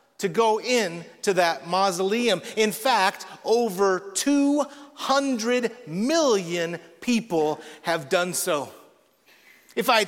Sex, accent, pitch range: male, American, 185-245 Hz